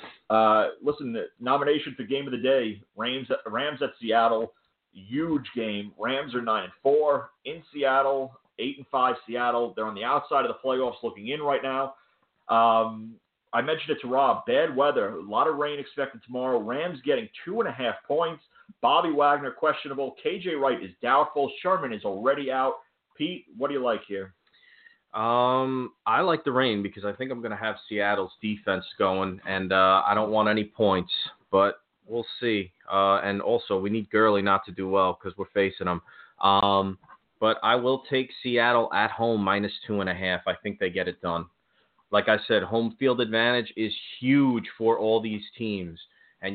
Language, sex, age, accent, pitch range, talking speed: English, male, 30-49, American, 100-130 Hz, 190 wpm